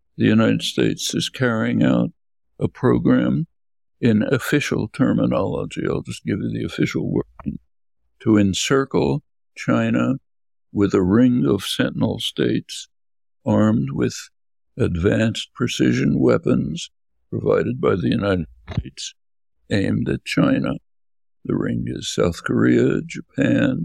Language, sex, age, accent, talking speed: English, male, 60-79, American, 115 wpm